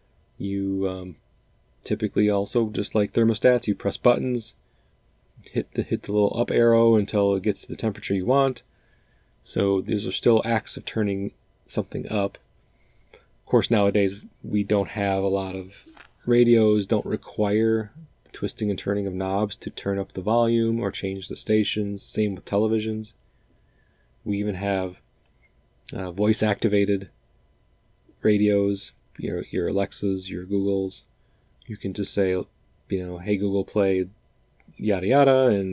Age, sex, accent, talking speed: 30-49, male, American, 145 wpm